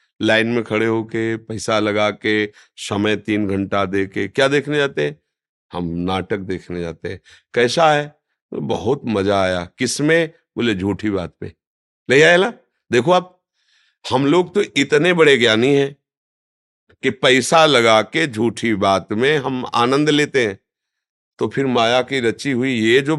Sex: male